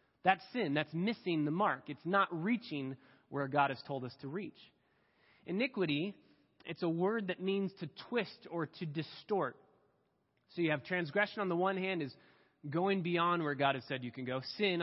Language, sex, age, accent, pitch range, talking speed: English, male, 20-39, American, 145-185 Hz, 185 wpm